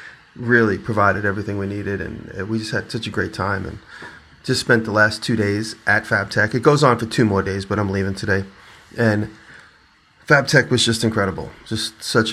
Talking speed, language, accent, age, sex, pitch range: 195 wpm, English, American, 30-49, male, 100-115 Hz